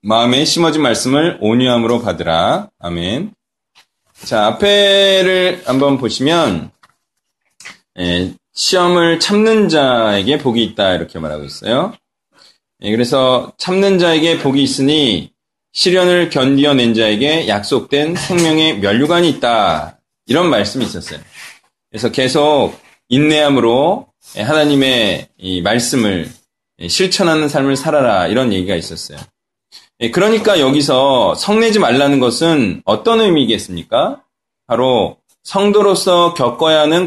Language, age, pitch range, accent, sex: Korean, 20-39, 130-195 Hz, native, male